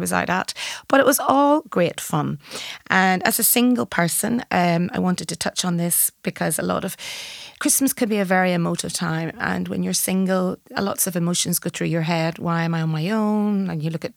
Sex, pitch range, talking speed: female, 175-220 Hz, 225 wpm